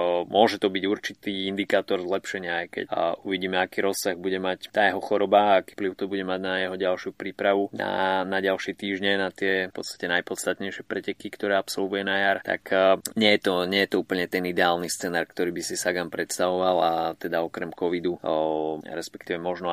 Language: Slovak